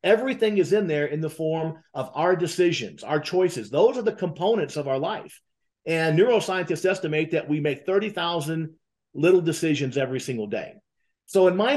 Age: 50-69